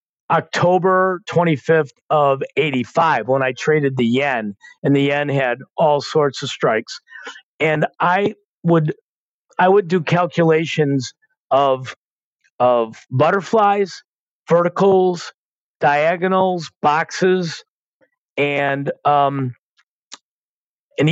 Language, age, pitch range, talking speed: English, 50-69, 135-180 Hz, 95 wpm